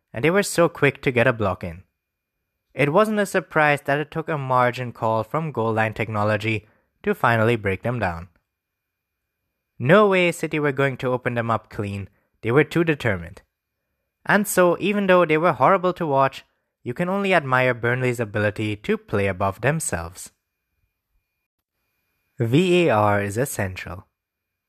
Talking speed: 160 wpm